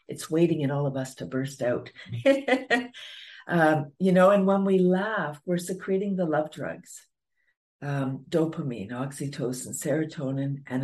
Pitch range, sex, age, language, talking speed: 155-195 Hz, female, 60-79, English, 145 wpm